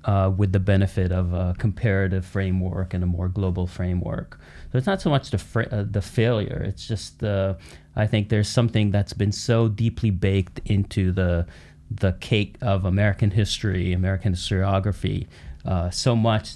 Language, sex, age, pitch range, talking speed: English, male, 30-49, 95-110 Hz, 170 wpm